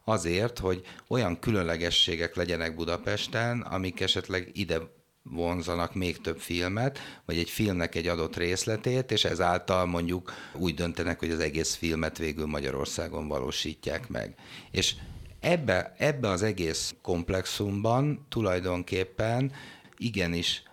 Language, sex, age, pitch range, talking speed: Hungarian, male, 60-79, 80-95 Hz, 115 wpm